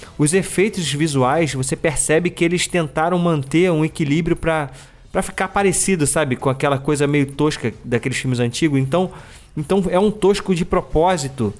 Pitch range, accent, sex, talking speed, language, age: 135-180 Hz, Brazilian, male, 155 wpm, Portuguese, 20-39